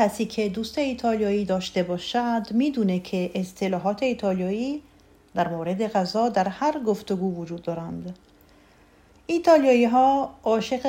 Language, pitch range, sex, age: Persian, 185-235 Hz, female, 40-59